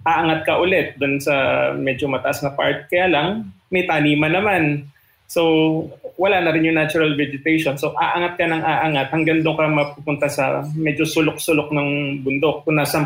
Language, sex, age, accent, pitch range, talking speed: Filipino, male, 20-39, native, 135-160 Hz, 170 wpm